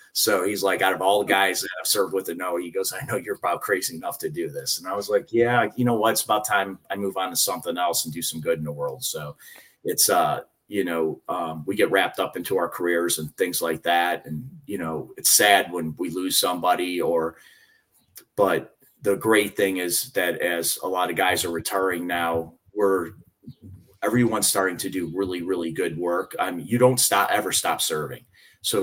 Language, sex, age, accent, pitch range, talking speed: English, male, 30-49, American, 85-100 Hz, 225 wpm